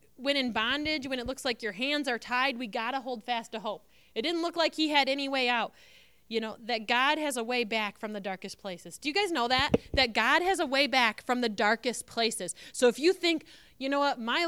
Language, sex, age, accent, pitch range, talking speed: English, female, 30-49, American, 220-280 Hz, 255 wpm